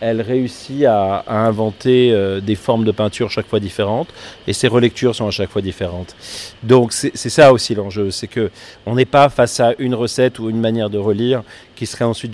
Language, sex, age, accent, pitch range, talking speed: French, male, 30-49, French, 100-125 Hz, 215 wpm